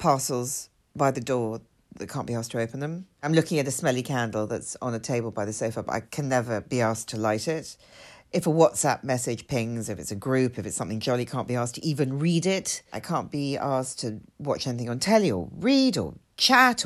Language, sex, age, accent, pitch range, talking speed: English, female, 40-59, British, 120-195 Hz, 235 wpm